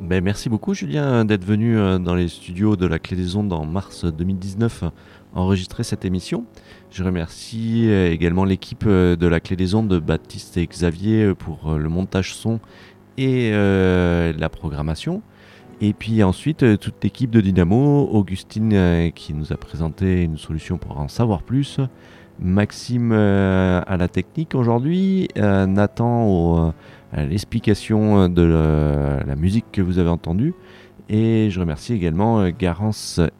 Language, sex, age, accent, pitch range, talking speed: French, male, 30-49, French, 85-110 Hz, 140 wpm